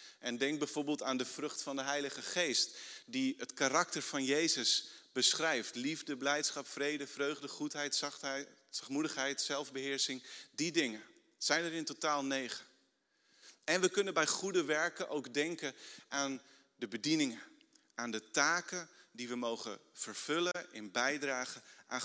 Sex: male